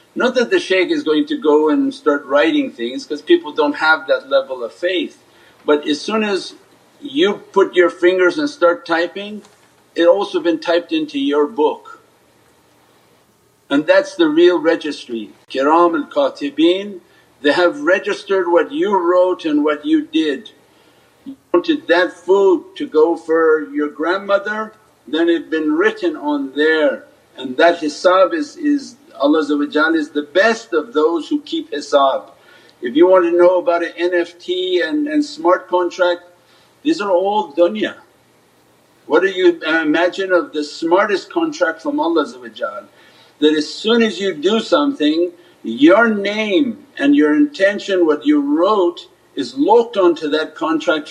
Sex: male